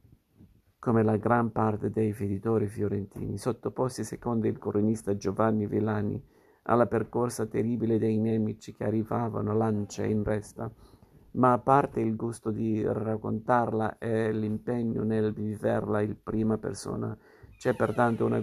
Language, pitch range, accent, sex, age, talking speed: Italian, 105-115 Hz, native, male, 50-69, 130 wpm